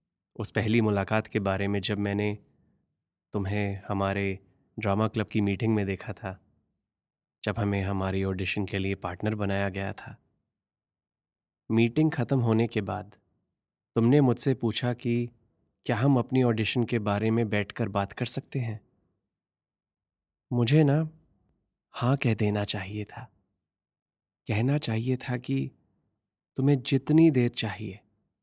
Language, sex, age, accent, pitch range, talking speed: Hindi, male, 20-39, native, 100-120 Hz, 135 wpm